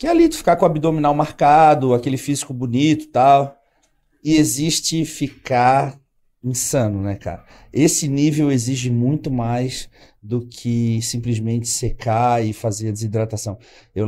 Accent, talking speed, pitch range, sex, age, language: Brazilian, 145 wpm, 120-155 Hz, male, 40-59, Portuguese